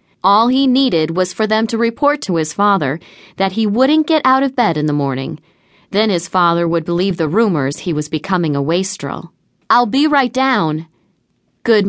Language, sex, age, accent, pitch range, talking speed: English, female, 40-59, American, 170-255 Hz, 190 wpm